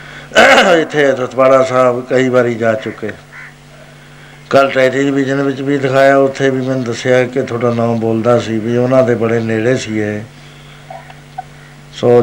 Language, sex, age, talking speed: Punjabi, male, 60-79, 145 wpm